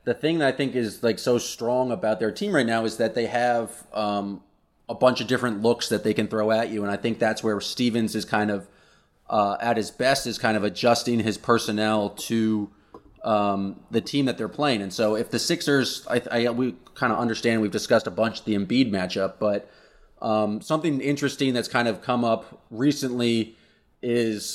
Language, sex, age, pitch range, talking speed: English, male, 30-49, 110-125 Hz, 210 wpm